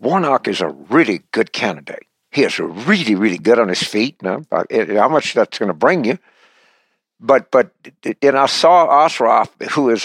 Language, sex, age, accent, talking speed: English, male, 60-79, American, 185 wpm